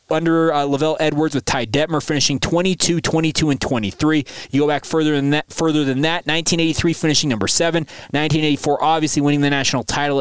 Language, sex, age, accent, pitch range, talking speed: English, male, 20-39, American, 130-160 Hz, 170 wpm